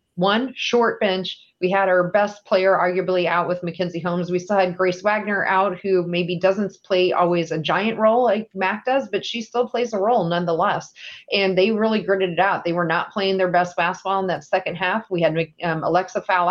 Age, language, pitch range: 30-49, English, 170-200 Hz